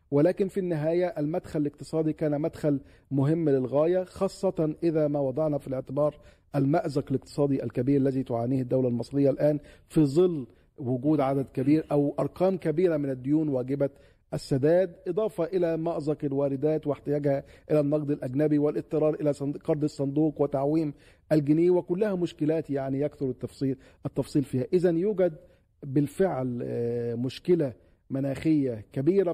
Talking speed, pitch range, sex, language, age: 125 wpm, 140-165 Hz, male, Arabic, 50-69